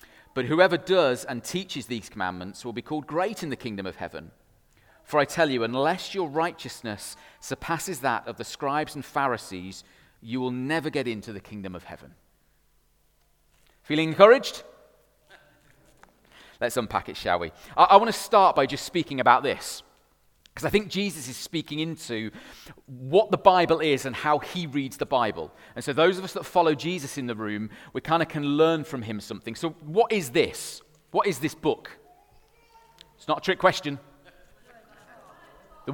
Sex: male